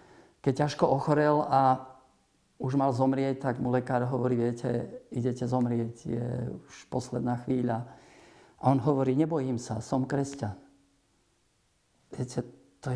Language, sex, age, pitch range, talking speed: Slovak, male, 50-69, 125-155 Hz, 130 wpm